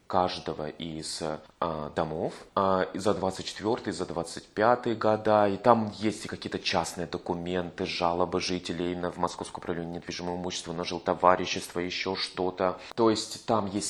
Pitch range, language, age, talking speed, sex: 90-110 Hz, Russian, 20-39, 150 wpm, male